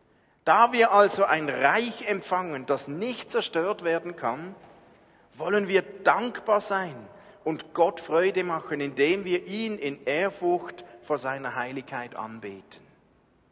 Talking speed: 125 wpm